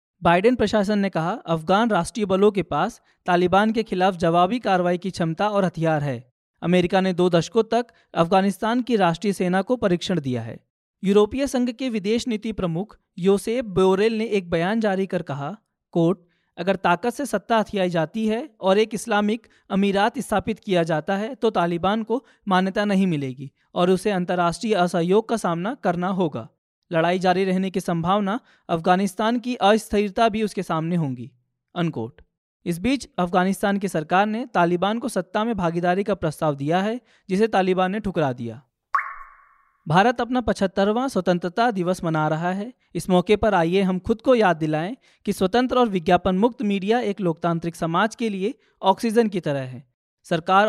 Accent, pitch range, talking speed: native, 175-220 Hz, 170 wpm